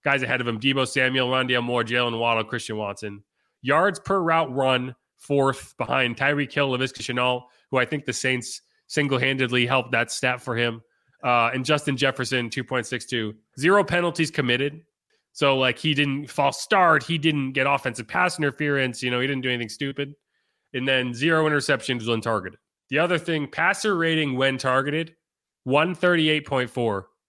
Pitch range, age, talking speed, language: 115-145 Hz, 30-49, 160 wpm, English